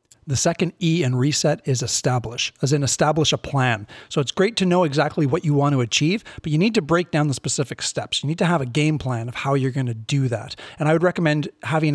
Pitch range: 135-155 Hz